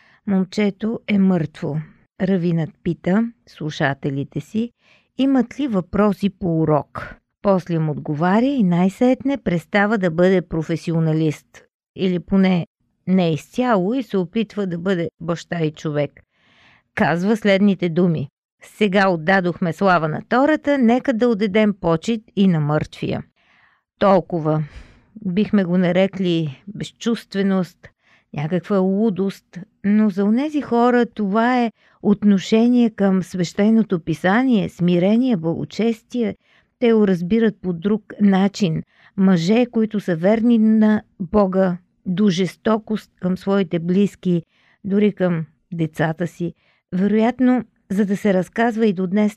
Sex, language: female, Bulgarian